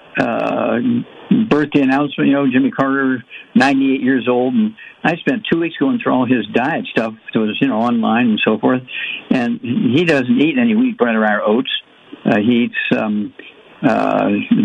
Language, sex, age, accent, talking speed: English, male, 60-79, American, 185 wpm